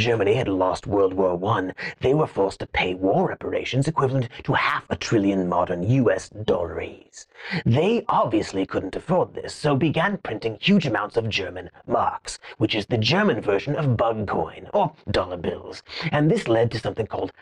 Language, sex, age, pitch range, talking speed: English, male, 30-49, 105-150 Hz, 175 wpm